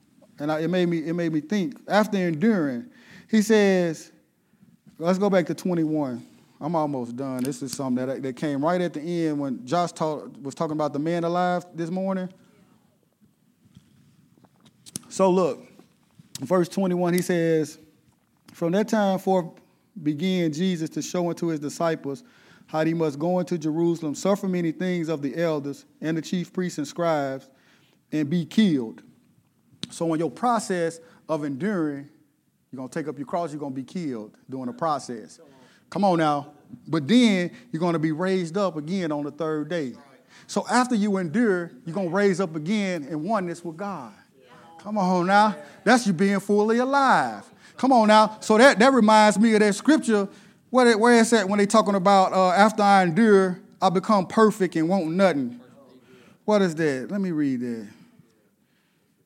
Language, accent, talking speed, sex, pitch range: English, American, 175 wpm, male, 155-205 Hz